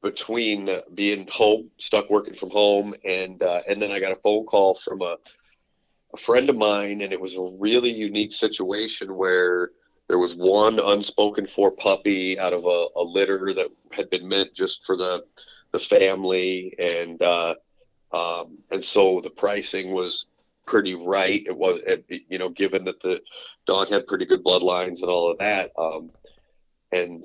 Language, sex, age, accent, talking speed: English, male, 40-59, American, 170 wpm